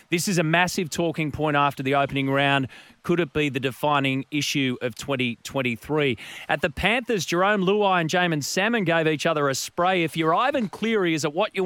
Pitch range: 140-170 Hz